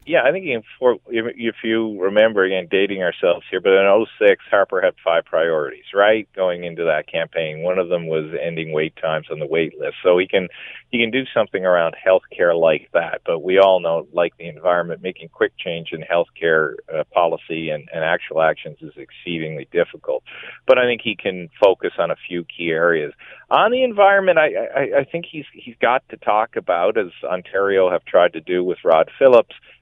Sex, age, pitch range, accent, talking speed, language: male, 40-59, 85-120 Hz, American, 195 wpm, English